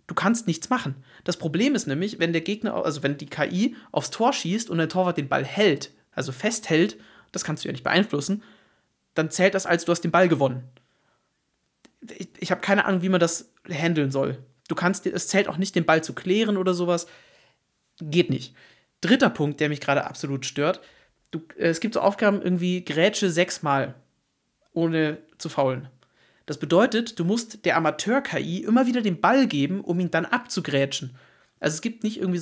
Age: 30-49